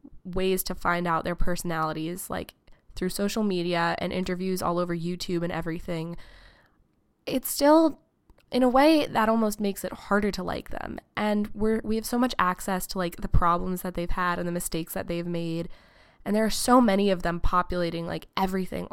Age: 20-39